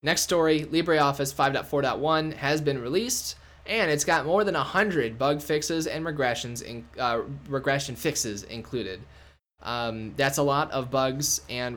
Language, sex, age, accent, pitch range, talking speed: English, male, 10-29, American, 120-150 Hz, 150 wpm